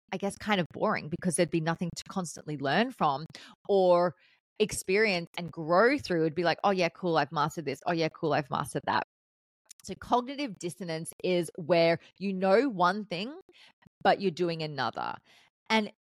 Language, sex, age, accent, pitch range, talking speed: English, female, 30-49, Australian, 160-195 Hz, 175 wpm